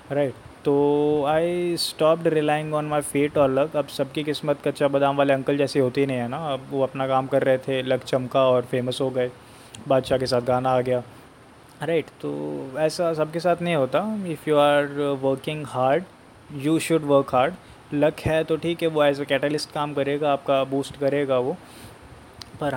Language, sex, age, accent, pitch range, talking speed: Hindi, male, 20-39, native, 135-155 Hz, 200 wpm